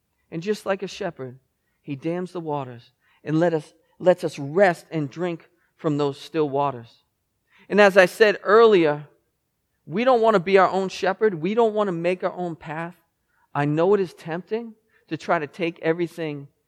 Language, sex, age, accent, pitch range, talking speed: English, male, 40-59, American, 150-210 Hz, 185 wpm